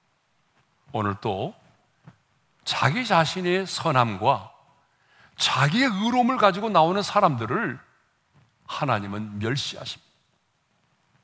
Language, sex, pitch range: Korean, male, 130-200 Hz